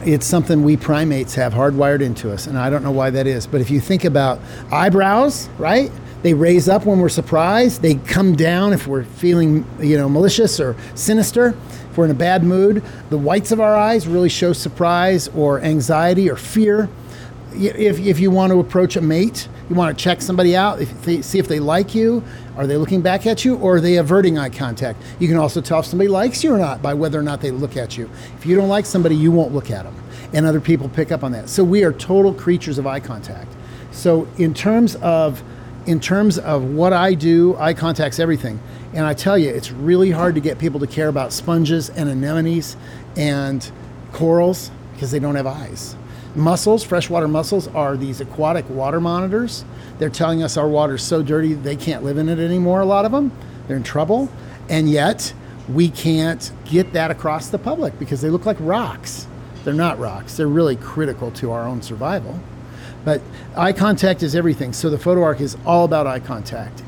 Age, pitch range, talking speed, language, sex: 50-69, 135-180 Hz, 210 wpm, English, male